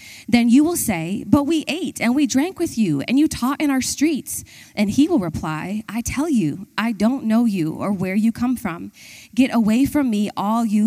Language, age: English, 20-39